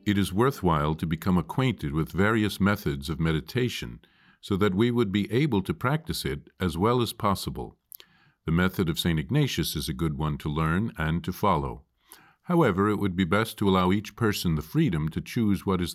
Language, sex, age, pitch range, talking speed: English, male, 50-69, 80-115 Hz, 200 wpm